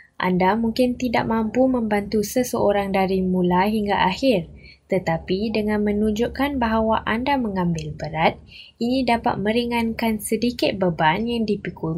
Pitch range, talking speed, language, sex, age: 185-240 Hz, 120 wpm, Malay, female, 10-29